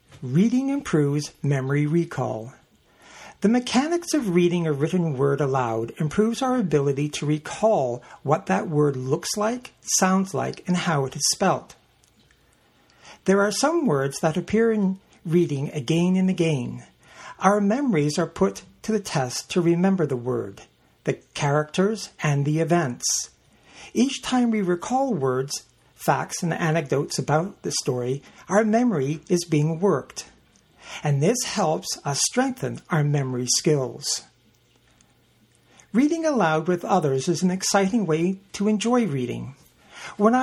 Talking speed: 135 wpm